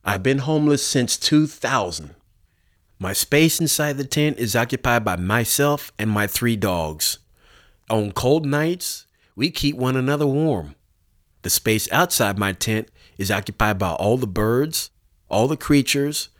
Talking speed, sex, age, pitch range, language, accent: 145 wpm, male, 30-49, 95-130 Hz, English, American